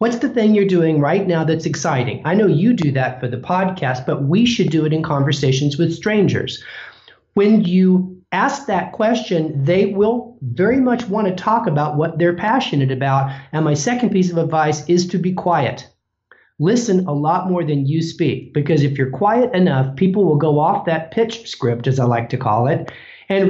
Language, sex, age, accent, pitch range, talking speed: English, male, 40-59, American, 135-185 Hz, 200 wpm